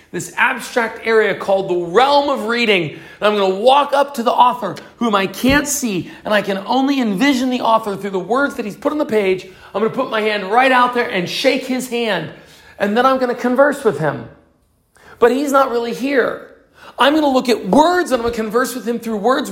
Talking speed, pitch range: 240 wpm, 185-250 Hz